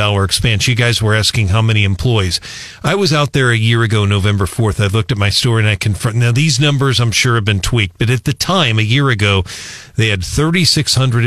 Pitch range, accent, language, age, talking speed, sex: 105-120 Hz, American, English, 40-59, 230 wpm, male